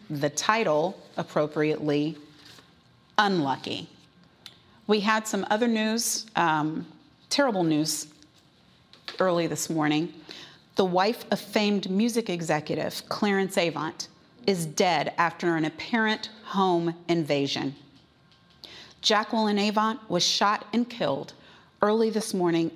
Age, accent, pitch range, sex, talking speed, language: 40-59, American, 160-210 Hz, female, 105 wpm, English